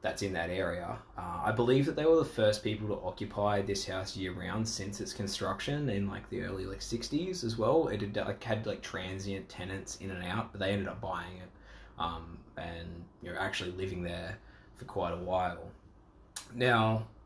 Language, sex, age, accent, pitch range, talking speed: English, male, 20-39, Australian, 95-110 Hz, 200 wpm